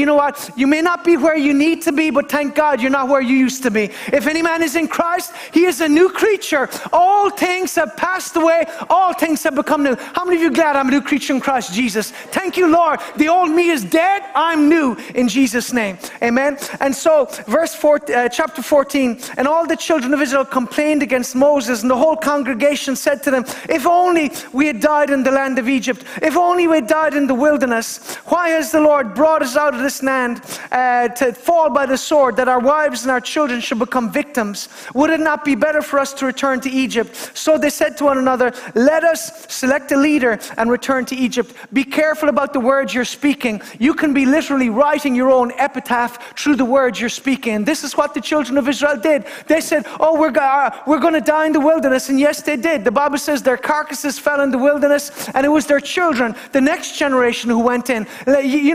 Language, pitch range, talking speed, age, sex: English, 260-310 Hz, 230 wpm, 30-49, male